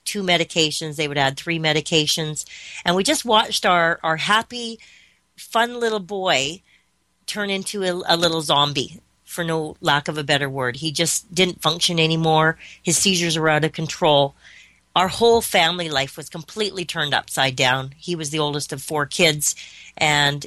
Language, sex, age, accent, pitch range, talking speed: English, female, 40-59, American, 150-180 Hz, 170 wpm